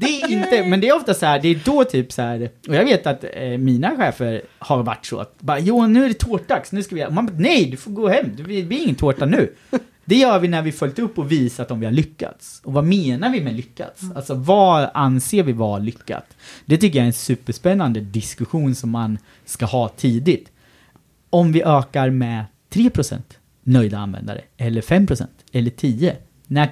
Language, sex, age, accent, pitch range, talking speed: Swedish, male, 30-49, native, 120-170 Hz, 205 wpm